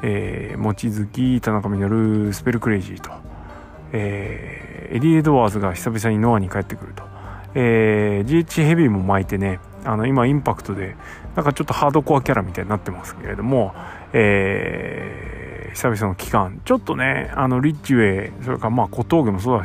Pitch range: 100-125 Hz